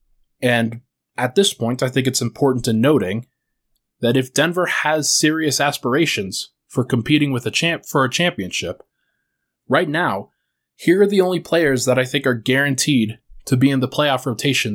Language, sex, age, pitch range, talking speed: English, male, 20-39, 120-145 Hz, 170 wpm